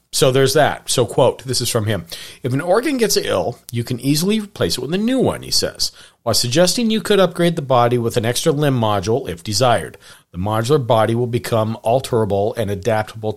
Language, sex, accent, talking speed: English, male, American, 210 wpm